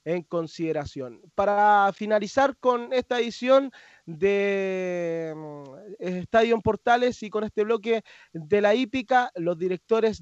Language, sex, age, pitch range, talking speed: Spanish, male, 20-39, 165-220 Hz, 115 wpm